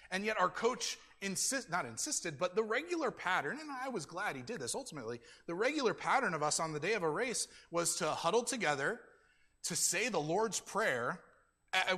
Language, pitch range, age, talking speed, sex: English, 140-185 Hz, 30-49, 200 wpm, male